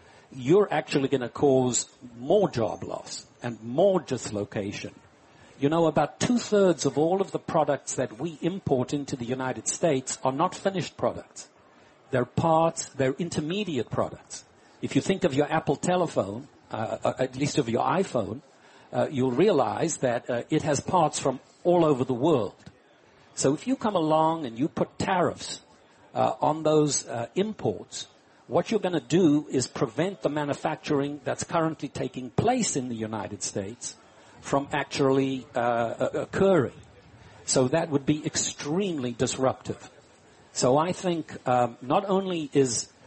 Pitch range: 125-160 Hz